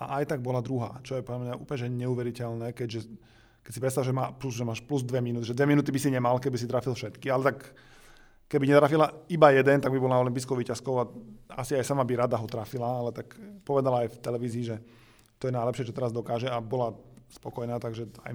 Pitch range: 125-140 Hz